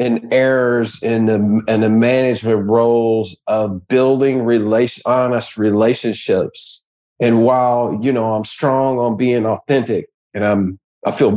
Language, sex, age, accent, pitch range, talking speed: English, male, 50-69, American, 105-135 Hz, 135 wpm